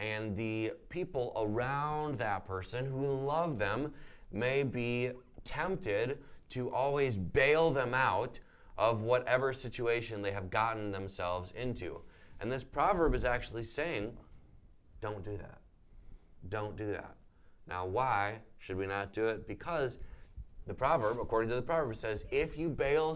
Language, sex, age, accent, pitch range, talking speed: English, male, 30-49, American, 105-135 Hz, 145 wpm